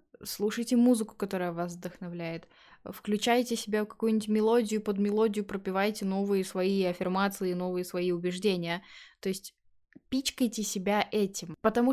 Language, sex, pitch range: Russian, female, 175-225 Hz